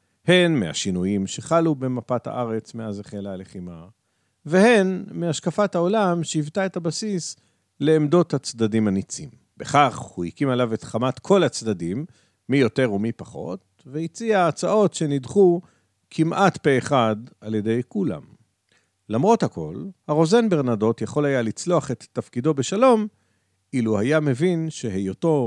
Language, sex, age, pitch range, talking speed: Hebrew, male, 50-69, 105-165 Hz, 125 wpm